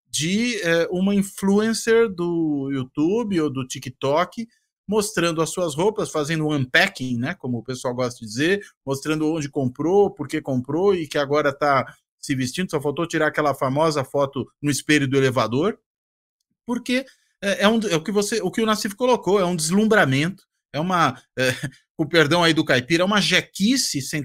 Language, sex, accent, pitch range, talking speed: Portuguese, male, Brazilian, 140-200 Hz, 180 wpm